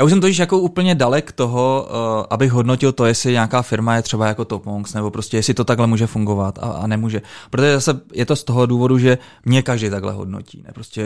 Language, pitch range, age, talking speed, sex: Czech, 105-125 Hz, 20-39, 245 wpm, male